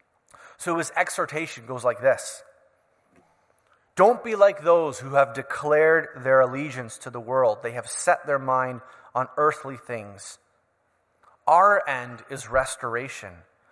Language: English